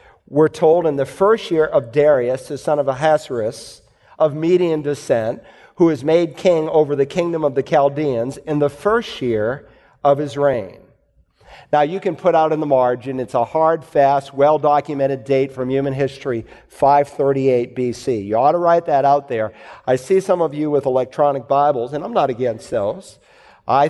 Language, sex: English, male